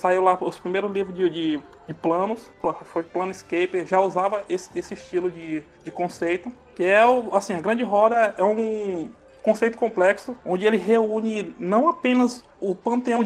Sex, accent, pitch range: male, Brazilian, 175-225 Hz